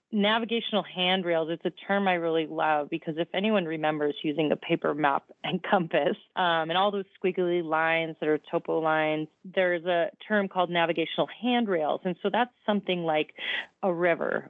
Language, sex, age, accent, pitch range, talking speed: English, female, 30-49, American, 160-185 Hz, 170 wpm